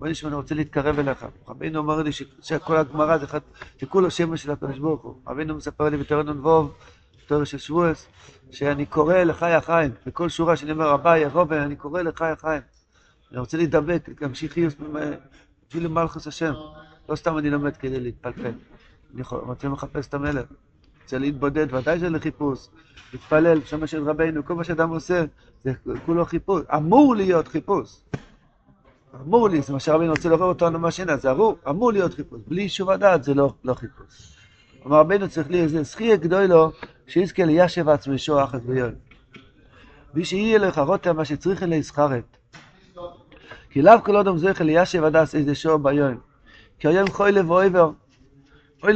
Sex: male